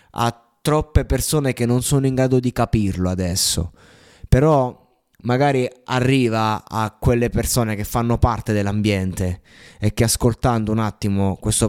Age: 20-39